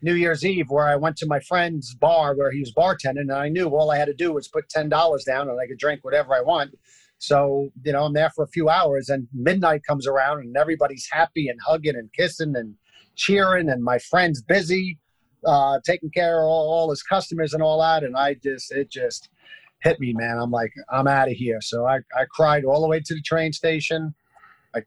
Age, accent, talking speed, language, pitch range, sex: 40-59, American, 230 wpm, English, 135-160 Hz, male